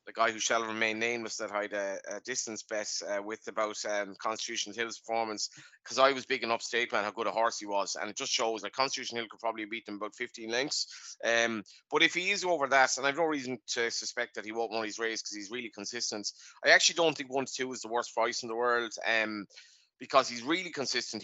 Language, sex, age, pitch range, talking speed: English, male, 30-49, 110-135 Hz, 250 wpm